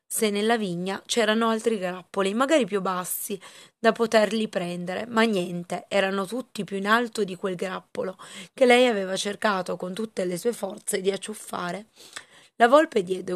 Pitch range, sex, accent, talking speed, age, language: 185-230 Hz, female, native, 160 wpm, 30-49, Italian